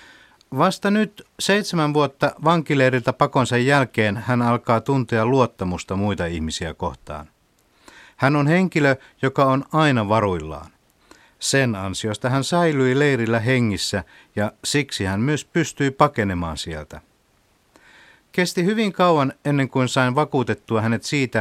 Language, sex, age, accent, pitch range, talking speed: Finnish, male, 50-69, native, 105-140 Hz, 120 wpm